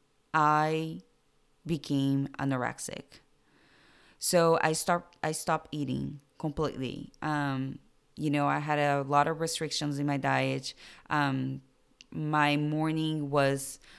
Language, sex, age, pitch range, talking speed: English, female, 20-39, 135-155 Hz, 110 wpm